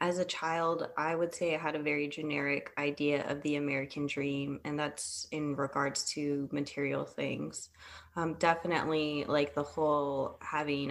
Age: 20-39